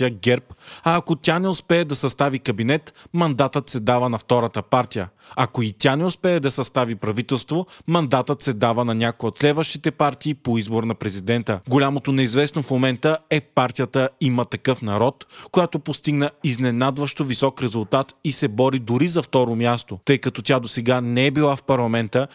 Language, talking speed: Bulgarian, 175 wpm